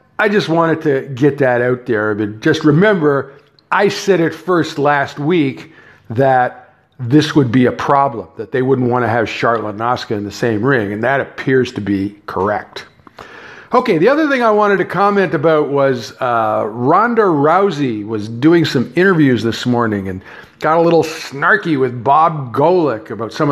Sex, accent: male, American